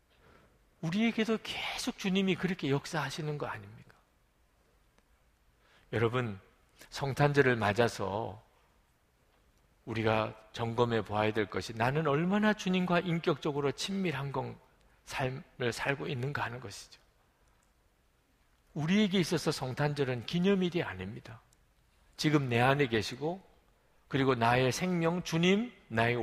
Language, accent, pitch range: Korean, native, 115-180 Hz